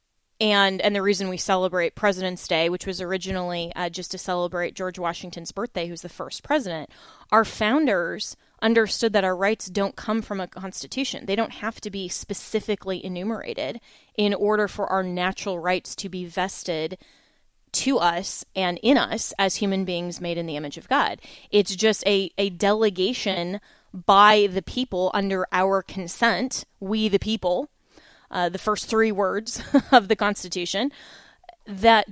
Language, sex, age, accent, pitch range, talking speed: English, female, 20-39, American, 185-215 Hz, 160 wpm